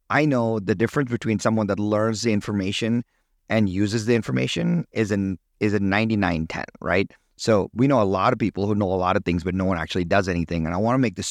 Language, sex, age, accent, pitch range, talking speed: English, male, 30-49, American, 95-120 Hz, 240 wpm